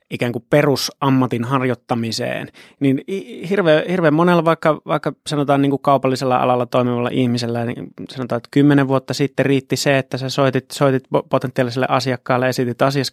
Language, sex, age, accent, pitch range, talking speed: Finnish, male, 20-39, native, 125-150 Hz, 145 wpm